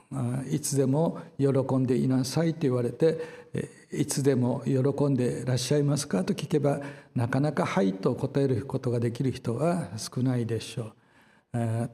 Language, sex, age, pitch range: Japanese, male, 60-79, 125-155 Hz